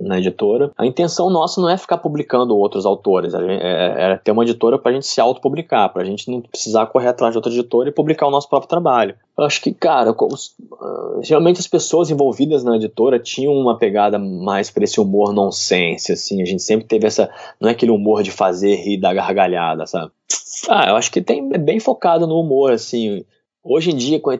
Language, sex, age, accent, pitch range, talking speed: Portuguese, male, 20-39, Brazilian, 100-140 Hz, 215 wpm